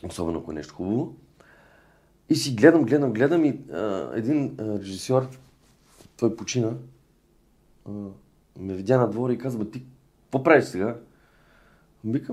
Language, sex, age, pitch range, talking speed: Bulgarian, male, 40-59, 95-130 Hz, 135 wpm